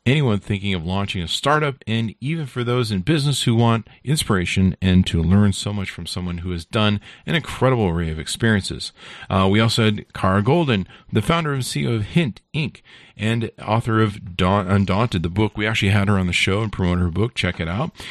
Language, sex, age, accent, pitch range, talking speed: English, male, 40-59, American, 95-120 Hz, 210 wpm